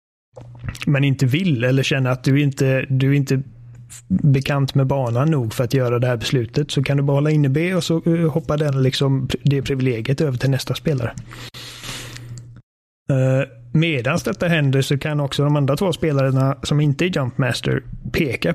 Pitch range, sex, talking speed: 125-140 Hz, male, 175 wpm